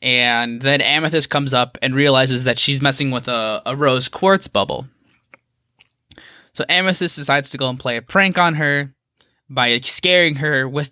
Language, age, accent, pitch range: English, 20-39, American, 125-155 Hz